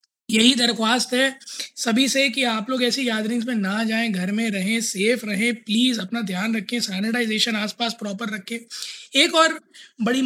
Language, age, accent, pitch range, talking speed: Hindi, 20-39, native, 210-250 Hz, 170 wpm